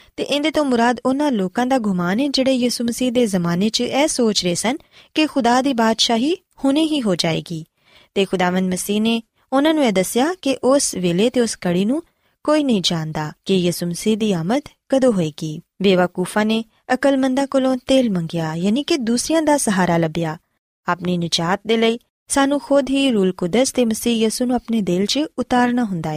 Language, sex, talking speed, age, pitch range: Punjabi, female, 185 wpm, 20-39, 180-260 Hz